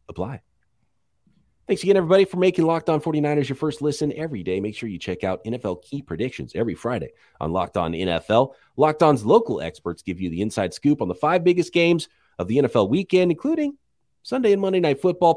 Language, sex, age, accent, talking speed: English, male, 30-49, American, 205 wpm